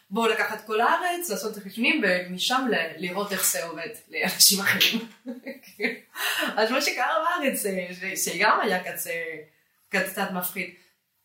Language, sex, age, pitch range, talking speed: Hebrew, female, 20-39, 190-245 Hz, 140 wpm